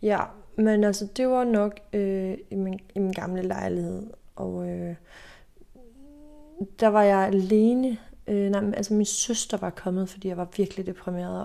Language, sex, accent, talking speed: Danish, female, native, 170 wpm